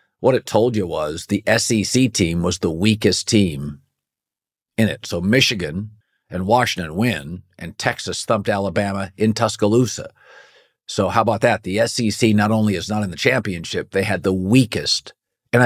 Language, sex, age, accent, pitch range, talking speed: English, male, 50-69, American, 95-110 Hz, 165 wpm